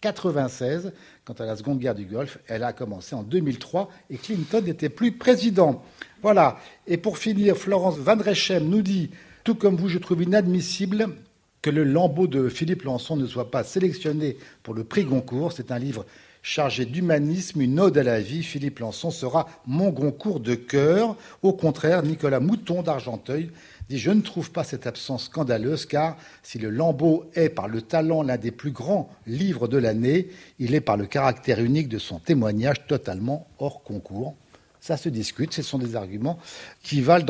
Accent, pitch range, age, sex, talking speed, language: French, 125-180 Hz, 50-69, male, 180 wpm, French